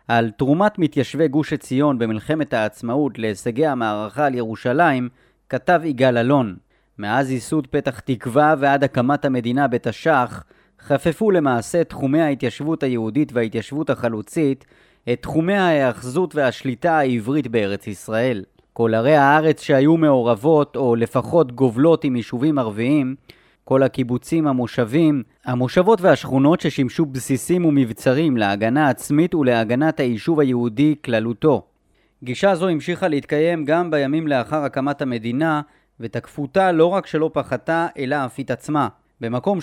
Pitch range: 125-155 Hz